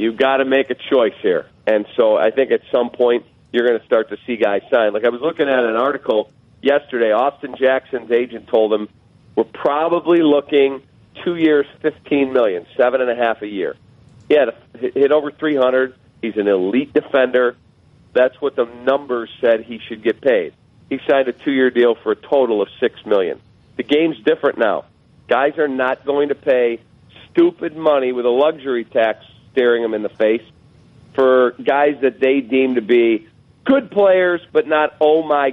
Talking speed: 190 wpm